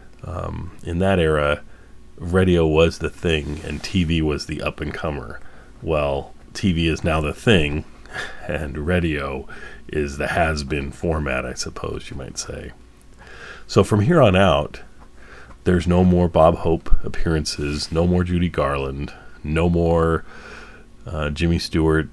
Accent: American